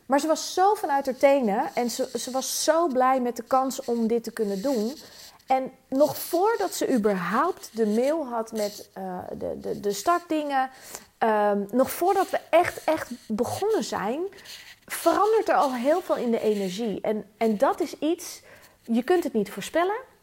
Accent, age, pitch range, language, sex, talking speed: Dutch, 30-49, 210-275 Hz, Dutch, female, 180 wpm